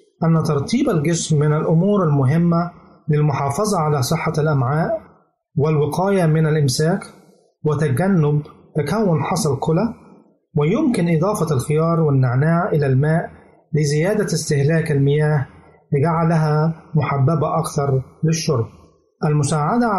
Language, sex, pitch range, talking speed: Arabic, male, 145-175 Hz, 95 wpm